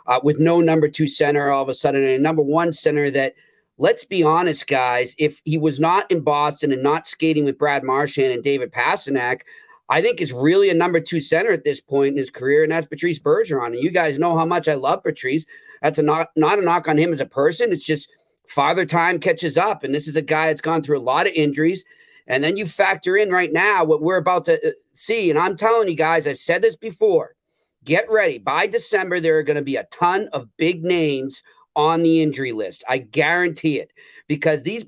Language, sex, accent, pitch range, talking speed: English, male, American, 155-195 Hz, 230 wpm